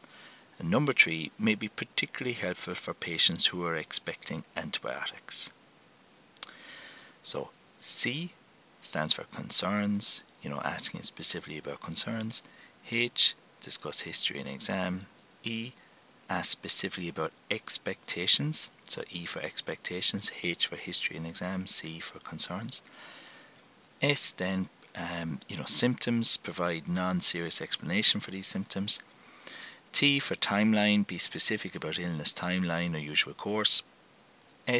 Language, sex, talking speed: English, male, 120 wpm